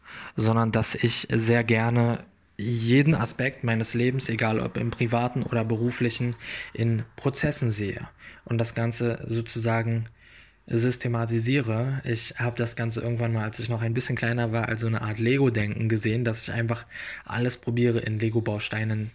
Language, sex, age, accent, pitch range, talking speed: German, male, 20-39, German, 110-120 Hz, 155 wpm